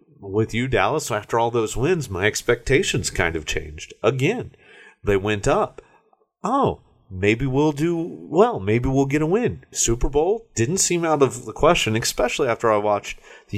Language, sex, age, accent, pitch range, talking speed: English, male, 30-49, American, 100-160 Hz, 170 wpm